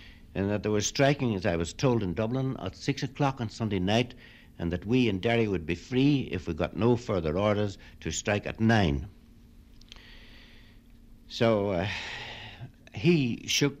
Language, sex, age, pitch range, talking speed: English, male, 60-79, 95-125 Hz, 170 wpm